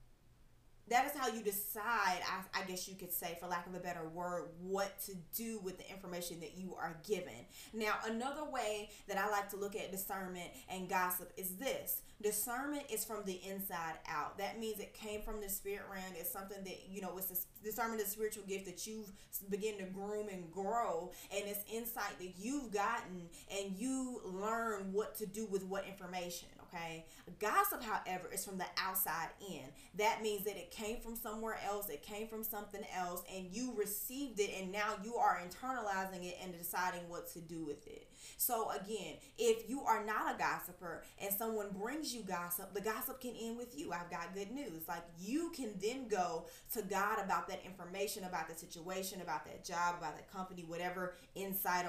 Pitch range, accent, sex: 180-215 Hz, American, female